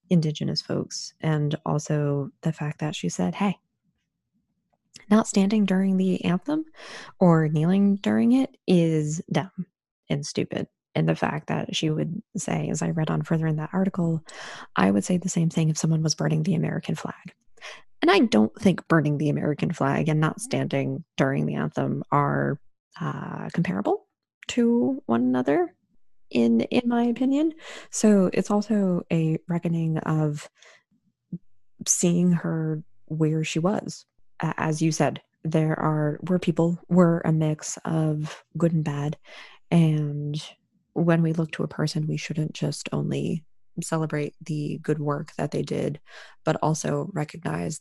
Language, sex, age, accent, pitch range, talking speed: English, female, 20-39, American, 150-180 Hz, 150 wpm